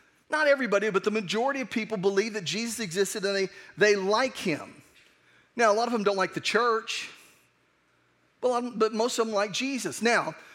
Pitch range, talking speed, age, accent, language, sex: 200-230 Hz, 195 wpm, 40-59, American, English, male